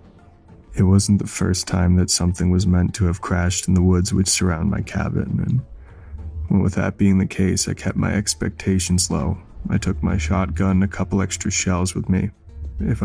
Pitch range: 90-100 Hz